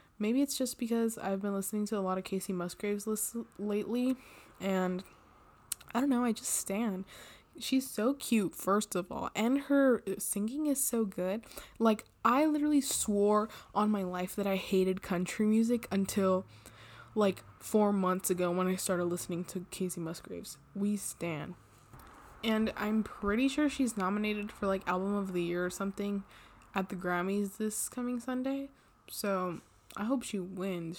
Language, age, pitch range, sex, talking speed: English, 20-39, 185-225 Hz, female, 165 wpm